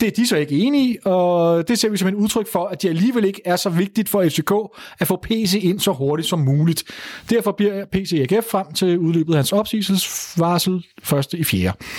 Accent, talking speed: native, 230 wpm